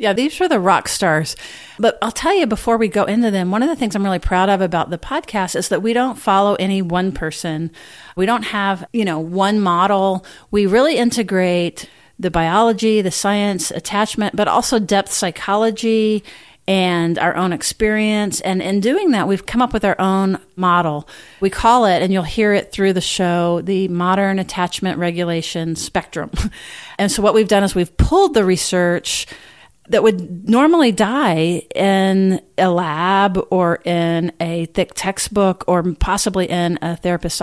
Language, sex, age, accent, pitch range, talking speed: English, female, 40-59, American, 175-210 Hz, 175 wpm